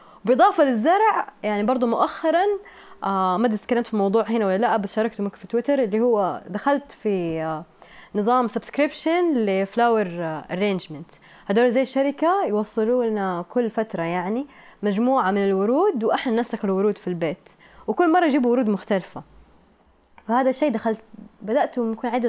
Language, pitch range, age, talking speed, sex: Arabic, 205-265 Hz, 20-39, 145 wpm, female